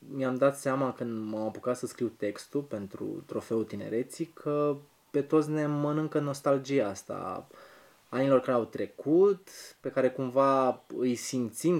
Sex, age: male, 20-39